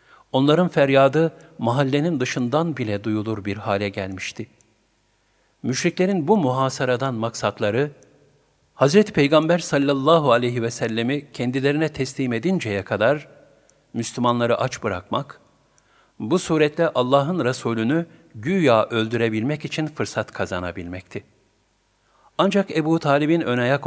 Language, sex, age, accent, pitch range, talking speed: Turkish, male, 50-69, native, 110-150 Hz, 100 wpm